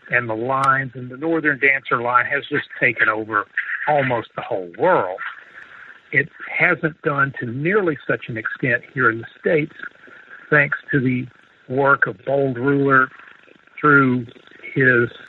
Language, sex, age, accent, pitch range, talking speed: English, male, 60-79, American, 125-170 Hz, 145 wpm